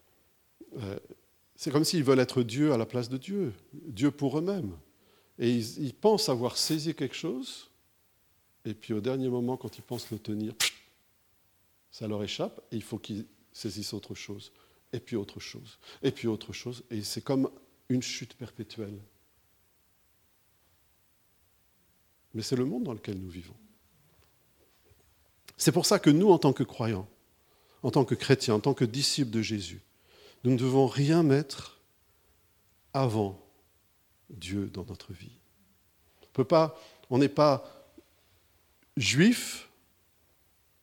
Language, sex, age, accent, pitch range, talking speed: French, male, 50-69, French, 100-130 Hz, 145 wpm